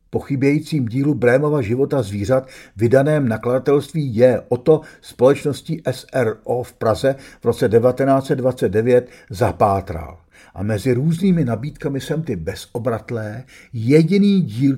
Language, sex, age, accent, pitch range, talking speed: Czech, male, 50-69, native, 120-165 Hz, 115 wpm